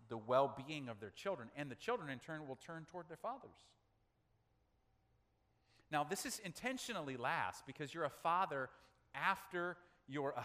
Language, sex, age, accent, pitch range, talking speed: English, male, 40-59, American, 120-170 Hz, 155 wpm